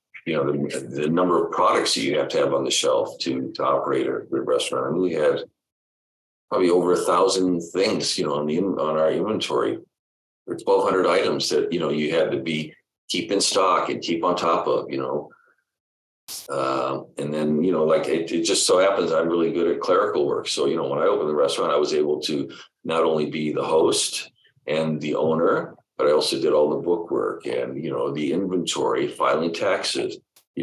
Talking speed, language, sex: 215 wpm, English, male